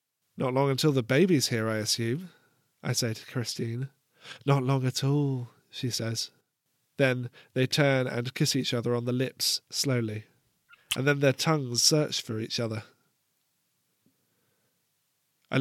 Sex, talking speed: male, 145 wpm